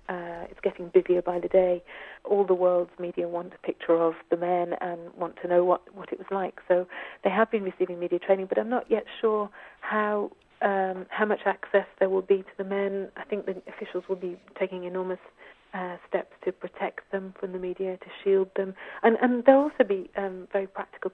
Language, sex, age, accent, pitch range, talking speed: English, female, 40-59, British, 175-195 Hz, 220 wpm